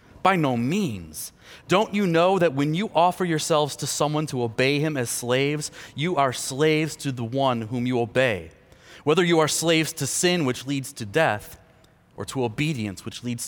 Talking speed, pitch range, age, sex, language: 185 wpm, 120-155 Hz, 30-49, male, English